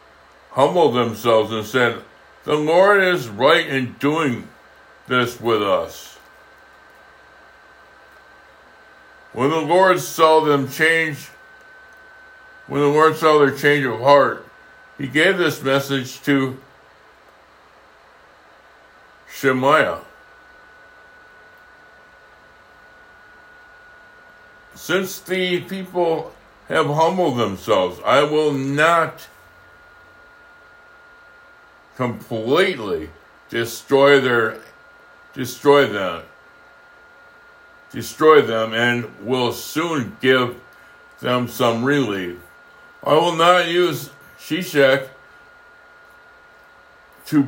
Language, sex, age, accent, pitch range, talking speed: English, male, 60-79, American, 125-155 Hz, 80 wpm